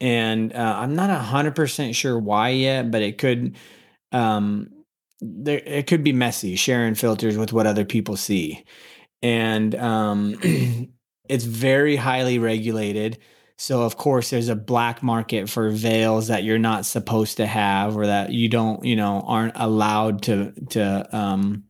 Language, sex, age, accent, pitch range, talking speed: English, male, 30-49, American, 105-120 Hz, 160 wpm